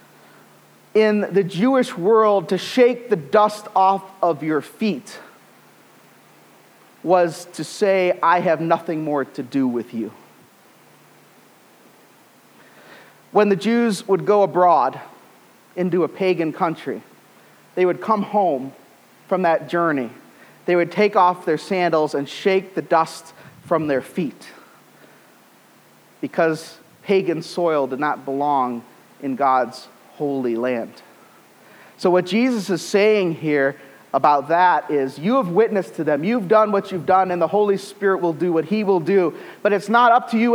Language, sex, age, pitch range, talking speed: English, male, 30-49, 160-215 Hz, 145 wpm